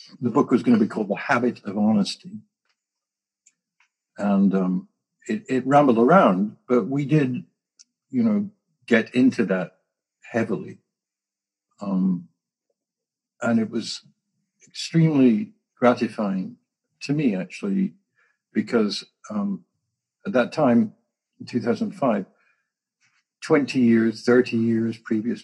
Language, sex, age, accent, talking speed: English, male, 60-79, American, 110 wpm